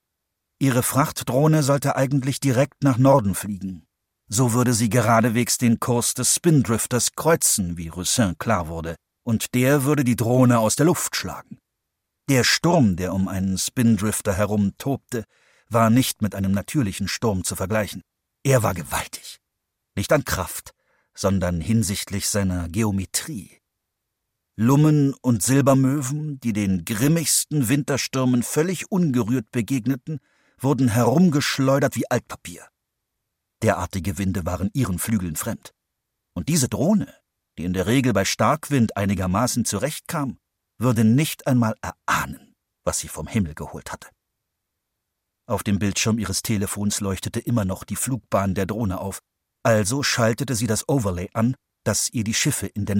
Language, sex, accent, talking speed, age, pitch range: German, male, German, 140 wpm, 50-69, 100-130 Hz